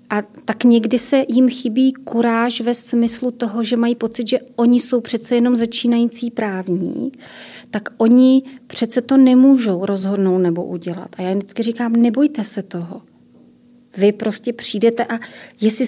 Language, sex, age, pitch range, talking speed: Czech, female, 30-49, 210-250 Hz, 150 wpm